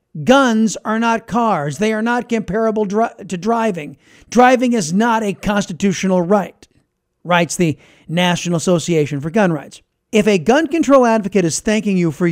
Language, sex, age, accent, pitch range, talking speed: English, male, 40-59, American, 155-205 Hz, 160 wpm